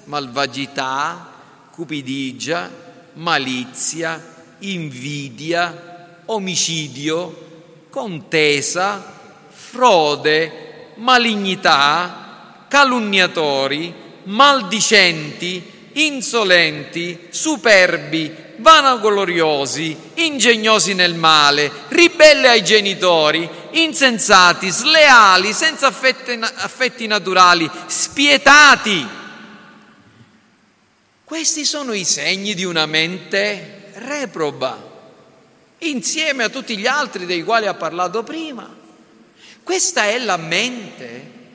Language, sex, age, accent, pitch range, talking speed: Italian, male, 40-59, native, 160-245 Hz, 70 wpm